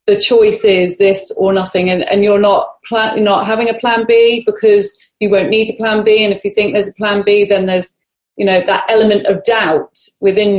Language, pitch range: English, 195-230 Hz